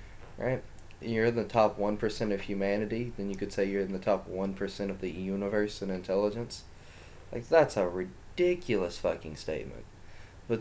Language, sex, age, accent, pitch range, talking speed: English, male, 20-39, American, 90-105 Hz, 170 wpm